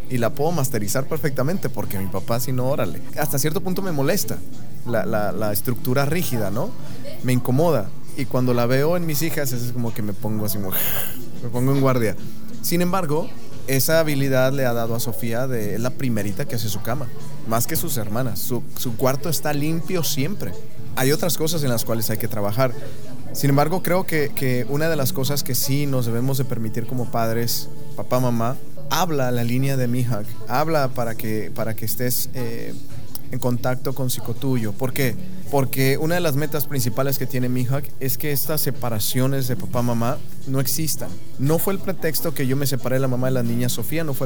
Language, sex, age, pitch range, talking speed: Spanish, male, 30-49, 120-145 Hz, 200 wpm